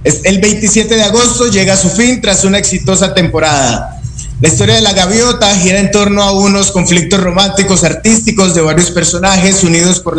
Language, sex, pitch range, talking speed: Spanish, male, 165-200 Hz, 175 wpm